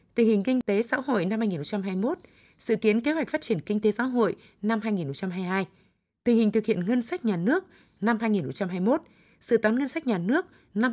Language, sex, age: Vietnamese, female, 20-39